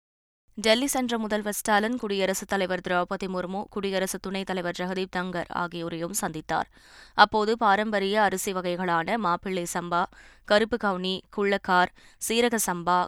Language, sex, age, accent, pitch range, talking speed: Tamil, female, 20-39, native, 175-205 Hz, 120 wpm